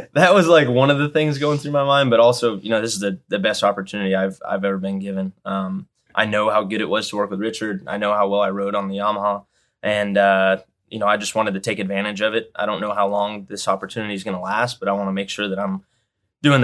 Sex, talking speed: male, 280 wpm